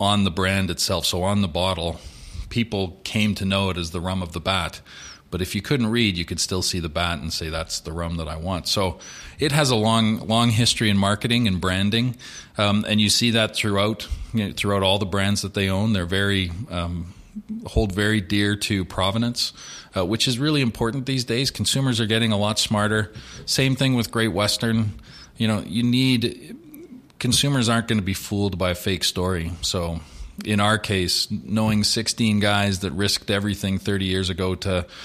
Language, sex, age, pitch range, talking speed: English, male, 40-59, 95-110 Hz, 200 wpm